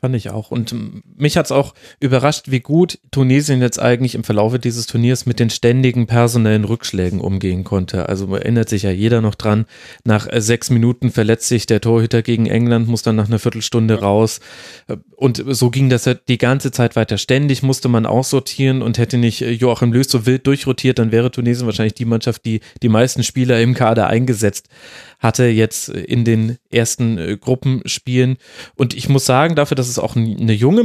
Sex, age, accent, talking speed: male, 30-49, German, 185 wpm